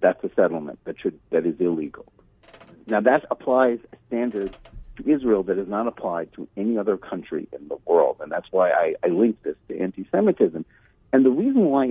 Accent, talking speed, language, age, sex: American, 190 wpm, English, 60-79, male